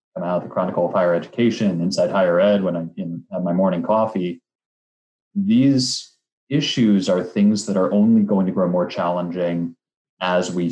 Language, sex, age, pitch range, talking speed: English, male, 20-39, 85-100 Hz, 160 wpm